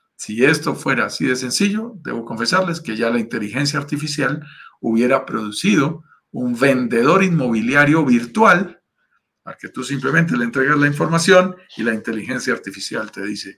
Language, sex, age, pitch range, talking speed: Spanish, male, 50-69, 110-155 Hz, 145 wpm